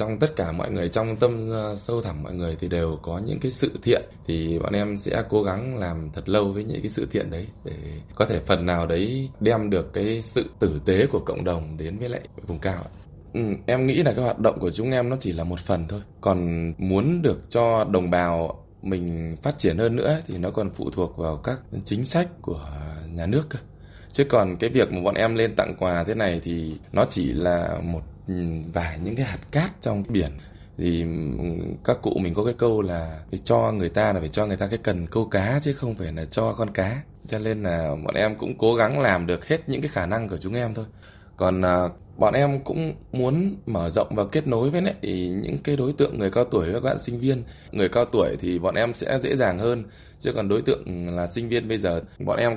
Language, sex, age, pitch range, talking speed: Vietnamese, male, 20-39, 85-120 Hz, 235 wpm